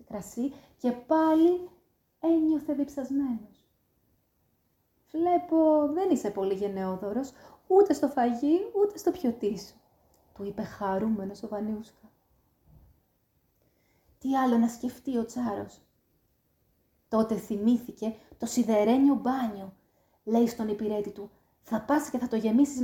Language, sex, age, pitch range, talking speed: Greek, female, 30-49, 195-260 Hz, 110 wpm